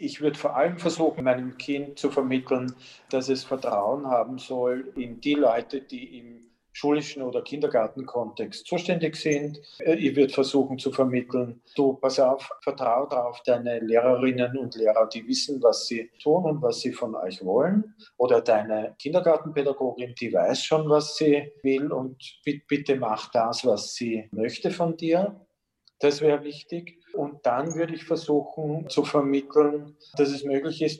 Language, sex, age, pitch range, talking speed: German, male, 40-59, 125-155 Hz, 160 wpm